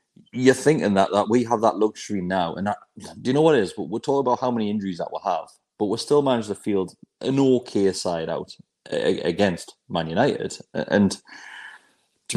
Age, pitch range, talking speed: 30-49, 90-115 Hz, 195 wpm